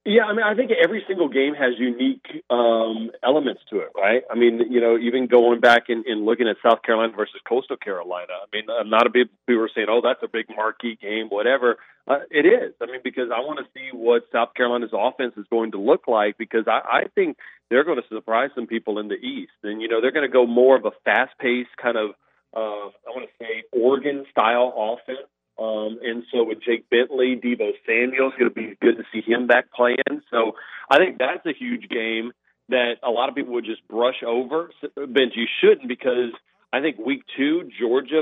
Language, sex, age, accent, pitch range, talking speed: English, male, 40-59, American, 115-145 Hz, 225 wpm